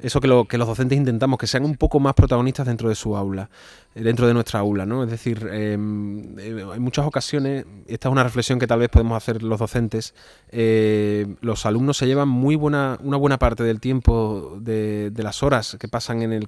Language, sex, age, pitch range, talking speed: Spanish, male, 20-39, 110-130 Hz, 215 wpm